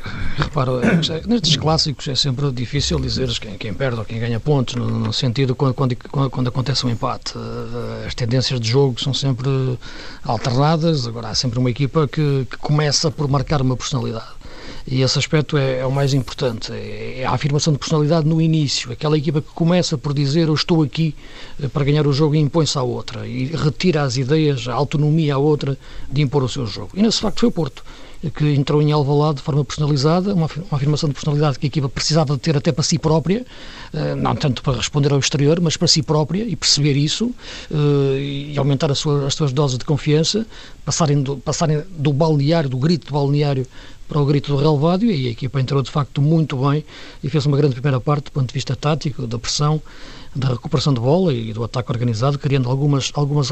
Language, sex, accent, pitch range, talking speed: Portuguese, male, Portuguese, 130-155 Hz, 200 wpm